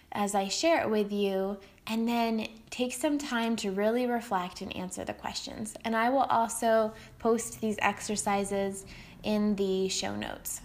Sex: female